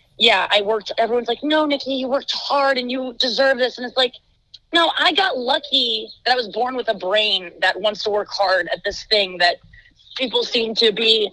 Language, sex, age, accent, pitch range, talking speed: English, female, 30-49, American, 215-280 Hz, 215 wpm